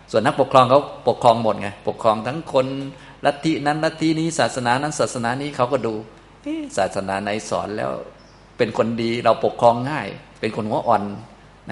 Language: Thai